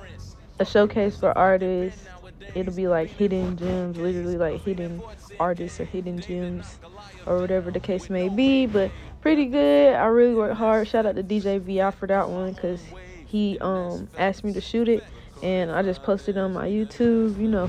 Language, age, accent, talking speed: English, 20-39, American, 185 wpm